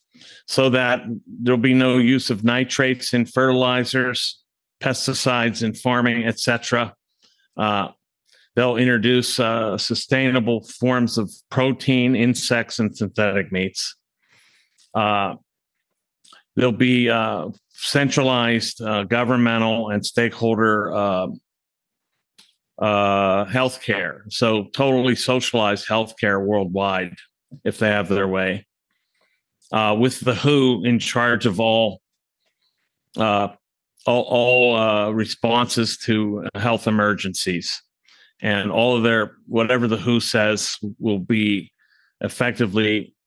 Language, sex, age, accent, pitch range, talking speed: English, male, 50-69, American, 105-125 Hz, 105 wpm